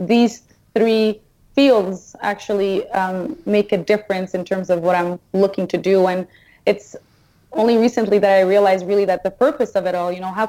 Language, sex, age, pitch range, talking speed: English, female, 20-39, 195-230 Hz, 190 wpm